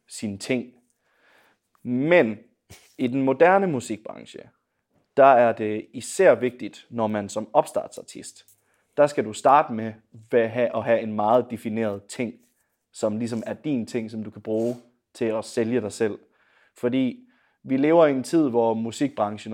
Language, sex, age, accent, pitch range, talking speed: Danish, male, 30-49, native, 110-125 Hz, 150 wpm